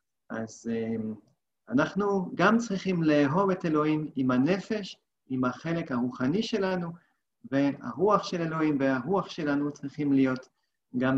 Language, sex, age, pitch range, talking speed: Hebrew, male, 40-59, 135-185 Hz, 120 wpm